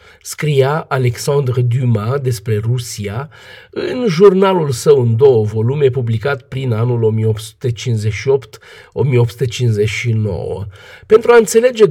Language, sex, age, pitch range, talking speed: Romanian, male, 50-69, 120-170 Hz, 90 wpm